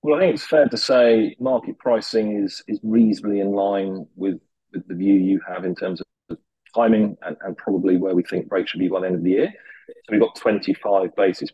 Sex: male